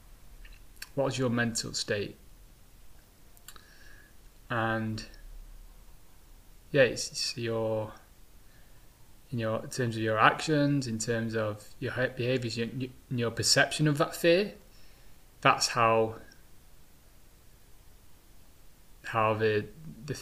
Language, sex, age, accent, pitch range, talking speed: English, male, 20-39, British, 105-125 Hz, 100 wpm